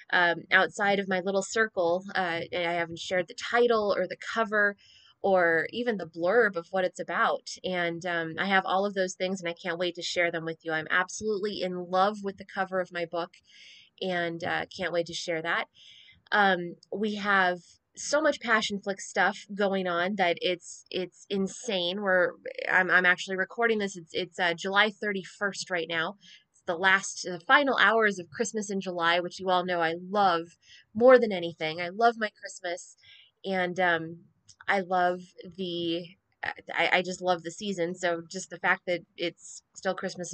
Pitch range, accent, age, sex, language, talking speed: 175-205 Hz, American, 20-39, female, English, 185 wpm